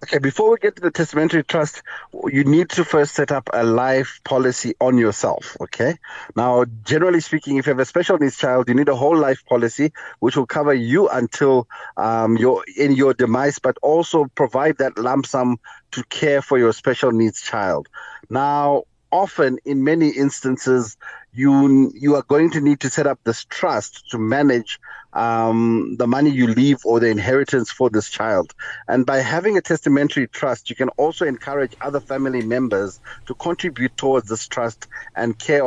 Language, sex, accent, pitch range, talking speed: English, male, South African, 120-145 Hz, 180 wpm